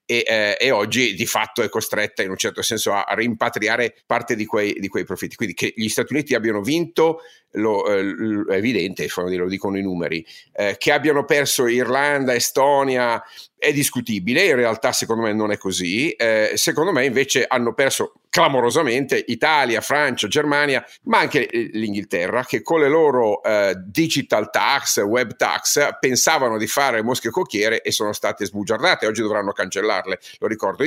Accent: native